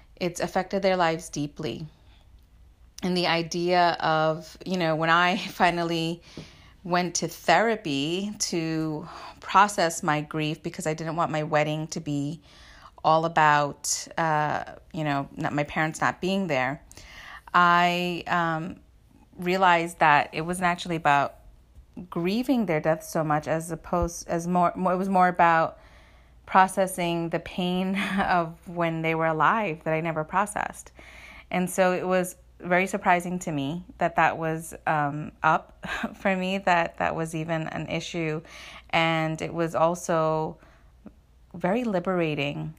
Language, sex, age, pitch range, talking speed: English, female, 30-49, 155-180 Hz, 140 wpm